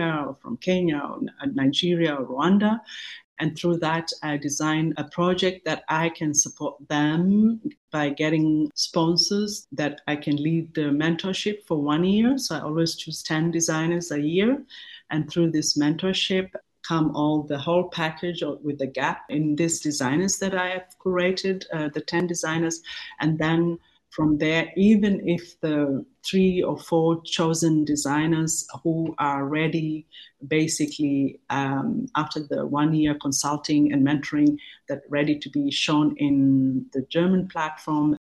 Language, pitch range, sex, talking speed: English, 150-180 Hz, female, 150 wpm